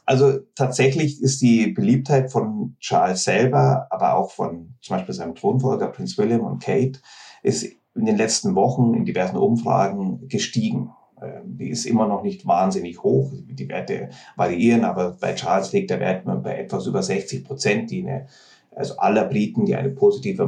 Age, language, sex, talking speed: 30-49, German, male, 165 wpm